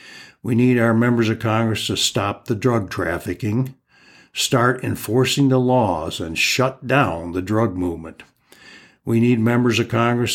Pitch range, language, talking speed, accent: 100-125 Hz, English, 150 wpm, American